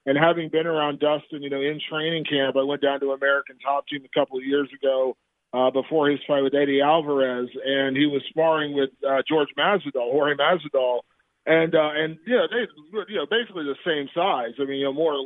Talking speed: 230 wpm